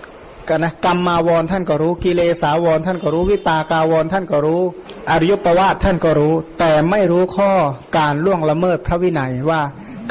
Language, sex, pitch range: Thai, male, 160-200 Hz